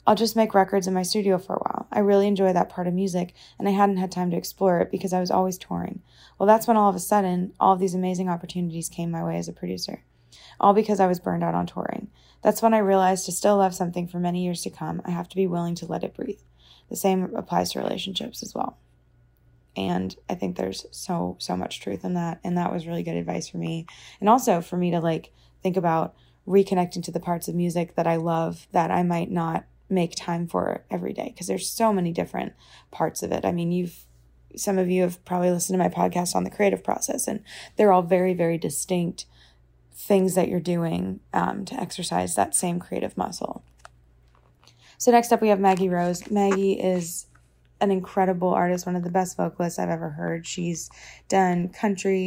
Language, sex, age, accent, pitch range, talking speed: English, female, 20-39, American, 155-190 Hz, 220 wpm